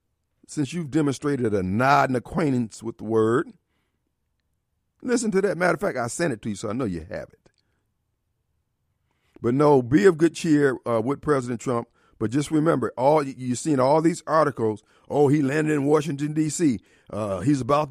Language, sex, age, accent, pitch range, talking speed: English, male, 50-69, American, 115-155 Hz, 185 wpm